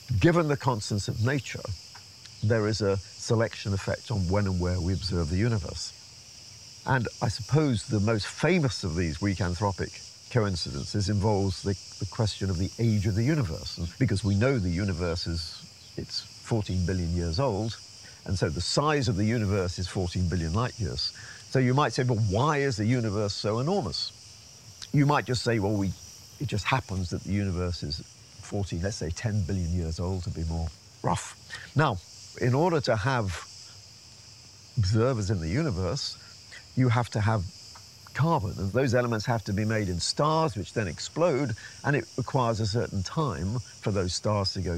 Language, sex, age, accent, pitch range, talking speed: English, male, 50-69, British, 95-115 Hz, 180 wpm